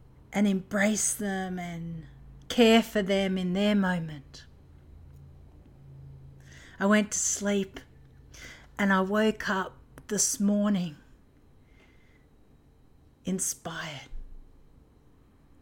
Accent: Australian